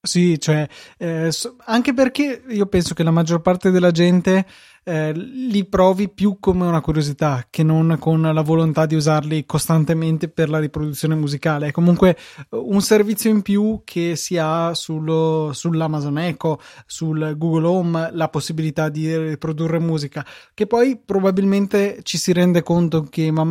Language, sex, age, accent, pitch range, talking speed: Italian, male, 20-39, native, 155-185 Hz, 160 wpm